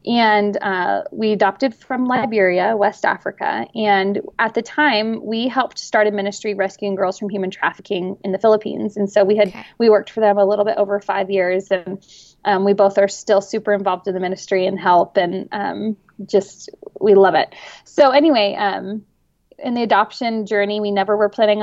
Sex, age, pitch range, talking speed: female, 20-39, 200-225 Hz, 190 wpm